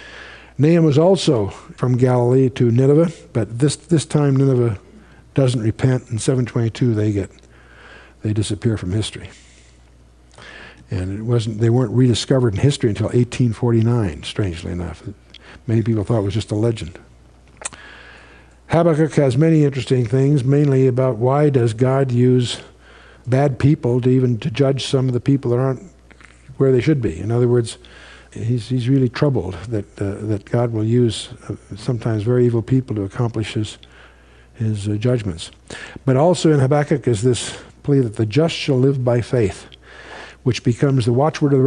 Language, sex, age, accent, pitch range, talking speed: English, male, 60-79, American, 105-135 Hz, 165 wpm